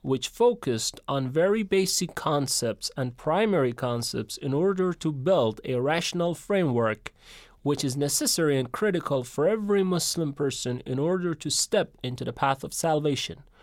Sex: male